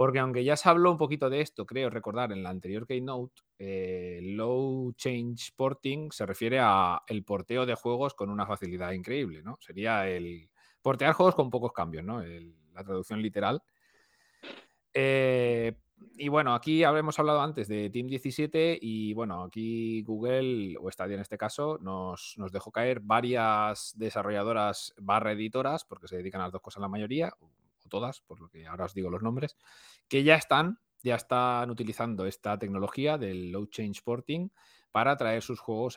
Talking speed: 170 wpm